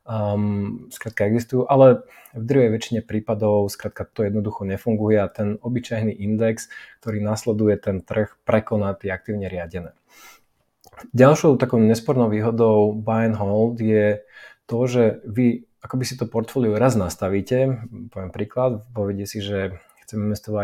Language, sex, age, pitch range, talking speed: Slovak, male, 20-39, 105-115 Hz, 135 wpm